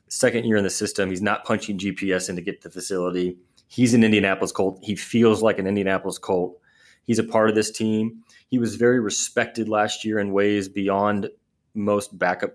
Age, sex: 30-49, male